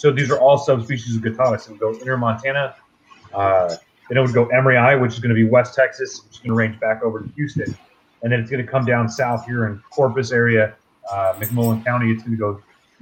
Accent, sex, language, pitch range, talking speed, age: American, male, English, 110-125 Hz, 250 wpm, 30-49